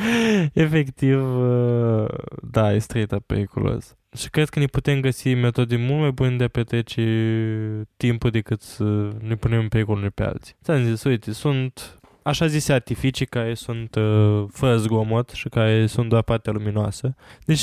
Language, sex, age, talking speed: Romanian, male, 10-29, 155 wpm